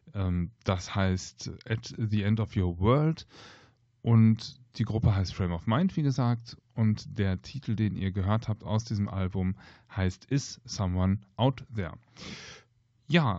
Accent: German